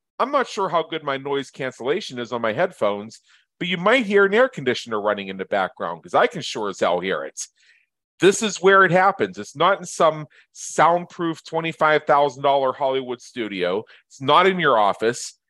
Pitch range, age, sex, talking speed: 130-170 Hz, 40-59, male, 190 wpm